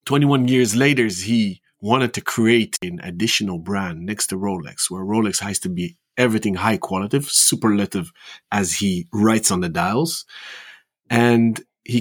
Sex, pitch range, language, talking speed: male, 100-125 Hz, English, 145 wpm